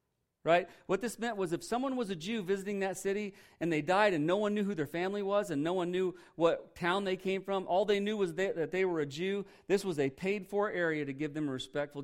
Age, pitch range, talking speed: 40-59, 145-195 Hz, 265 wpm